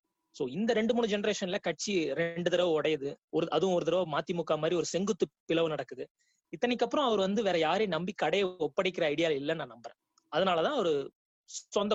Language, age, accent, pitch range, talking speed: Tamil, 20-39, native, 170-225 Hz, 175 wpm